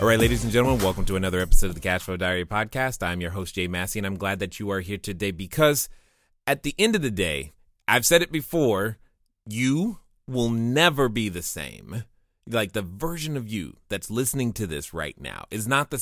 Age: 30-49